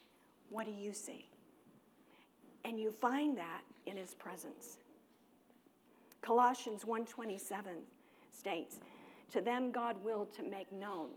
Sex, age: female, 50-69